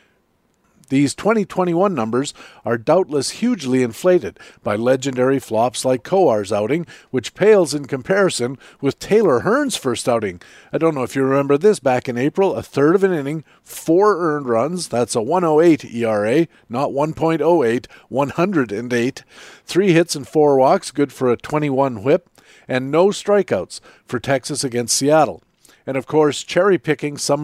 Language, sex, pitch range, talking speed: English, male, 120-160 Hz, 150 wpm